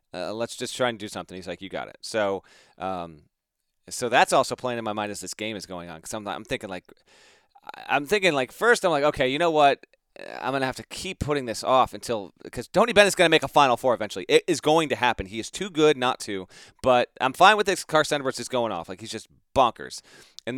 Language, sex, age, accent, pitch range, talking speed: English, male, 30-49, American, 100-140 Hz, 250 wpm